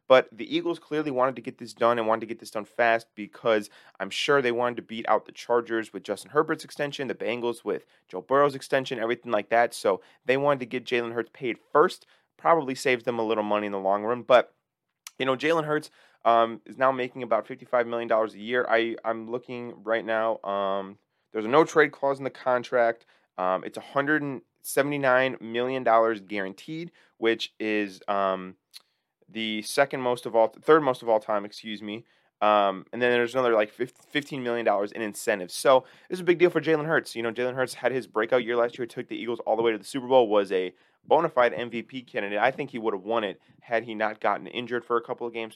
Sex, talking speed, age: male, 225 wpm, 20-39